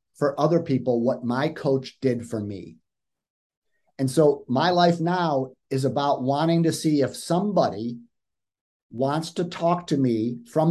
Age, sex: 50-69, male